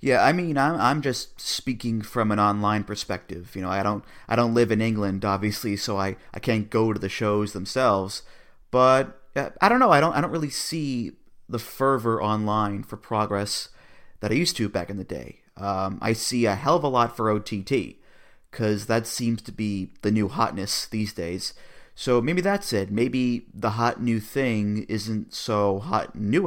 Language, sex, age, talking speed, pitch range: English, male, 30-49, 195 wpm, 105-120 Hz